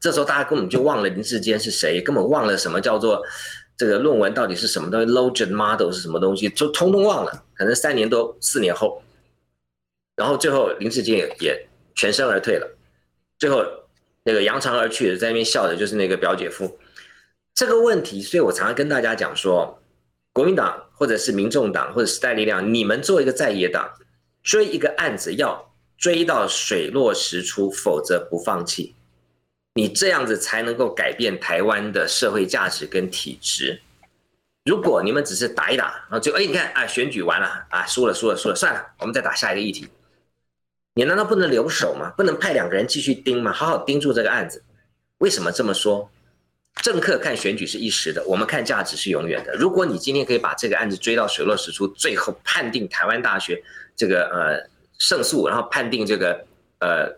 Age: 50-69